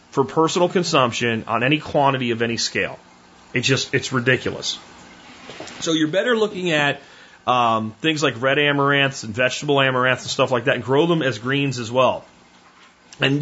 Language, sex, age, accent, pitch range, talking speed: English, male, 30-49, American, 120-155 Hz, 170 wpm